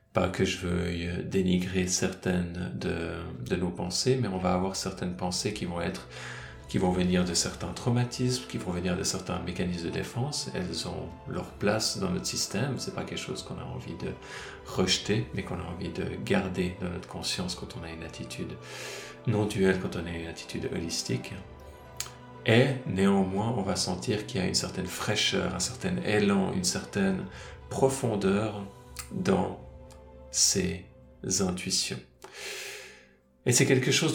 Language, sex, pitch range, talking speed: French, male, 85-115 Hz, 165 wpm